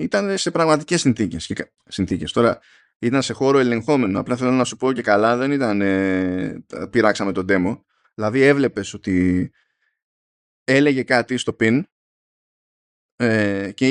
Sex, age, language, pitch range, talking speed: male, 20-39, Greek, 100-135 Hz, 130 wpm